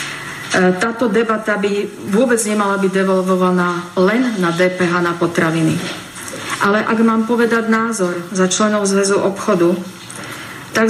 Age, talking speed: 40-59, 120 wpm